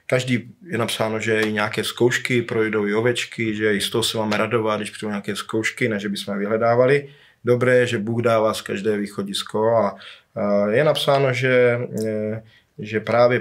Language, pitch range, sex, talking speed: Slovak, 105-120 Hz, male, 170 wpm